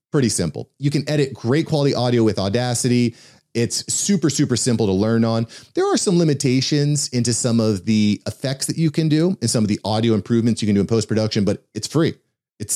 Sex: male